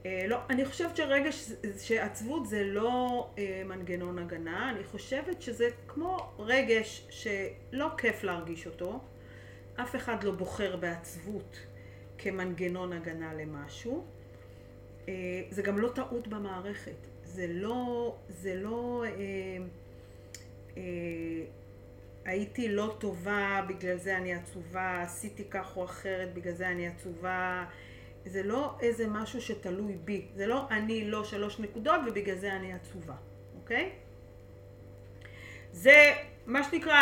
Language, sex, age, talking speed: English, female, 40-59, 120 wpm